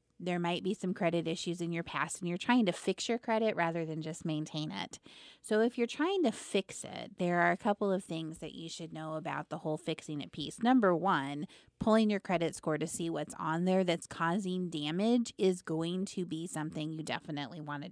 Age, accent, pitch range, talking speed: 30-49, American, 160-190 Hz, 220 wpm